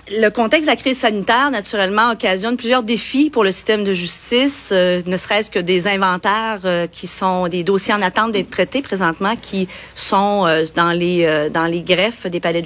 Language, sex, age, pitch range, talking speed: French, female, 40-59, 185-230 Hz, 200 wpm